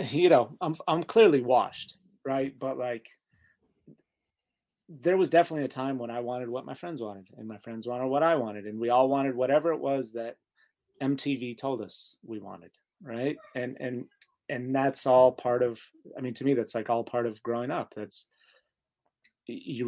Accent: American